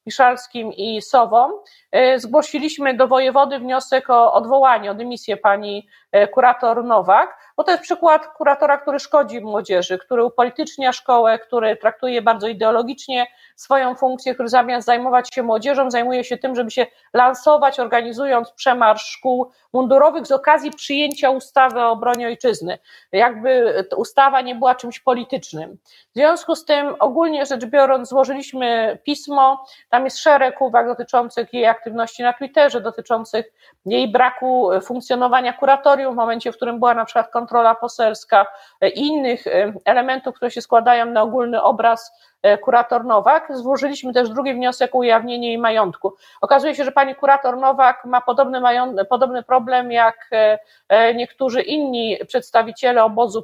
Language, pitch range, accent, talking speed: Polish, 230-270 Hz, native, 140 wpm